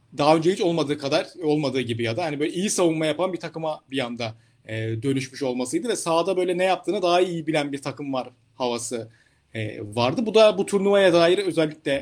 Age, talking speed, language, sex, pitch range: 40-59, 205 wpm, Turkish, male, 140-185 Hz